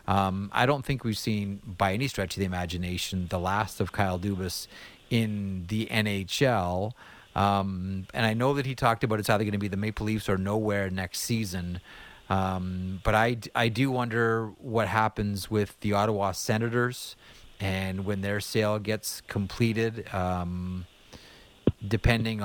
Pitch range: 95-115 Hz